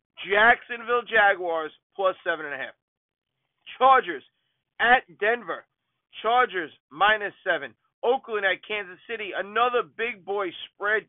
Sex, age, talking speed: male, 40-59, 115 wpm